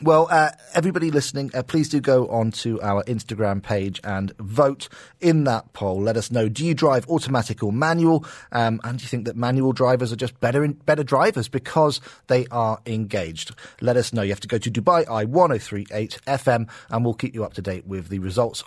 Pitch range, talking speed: 115-155 Hz, 210 wpm